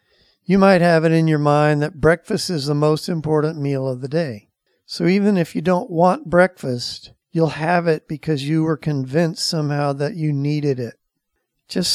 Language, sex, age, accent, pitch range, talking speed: English, male, 50-69, American, 140-165 Hz, 185 wpm